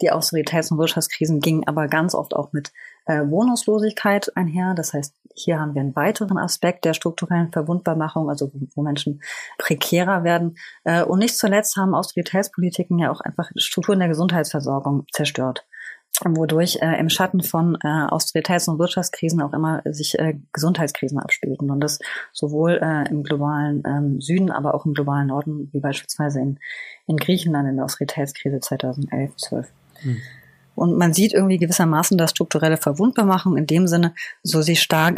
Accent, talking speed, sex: German, 160 wpm, female